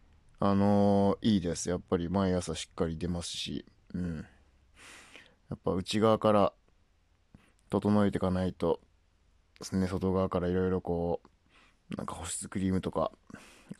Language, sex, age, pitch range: Japanese, male, 20-39, 85-100 Hz